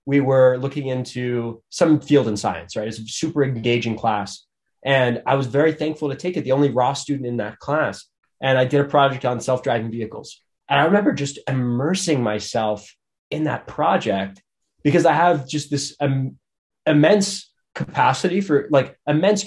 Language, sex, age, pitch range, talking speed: English, male, 20-39, 120-145 Hz, 175 wpm